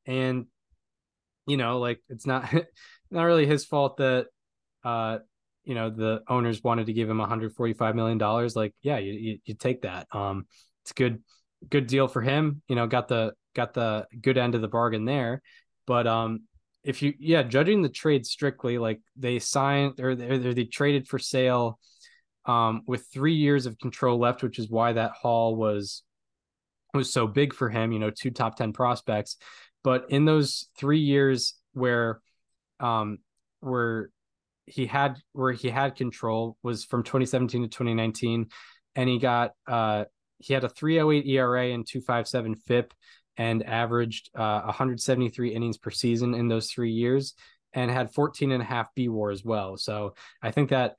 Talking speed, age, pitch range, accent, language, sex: 175 wpm, 10-29, 110-130 Hz, American, English, male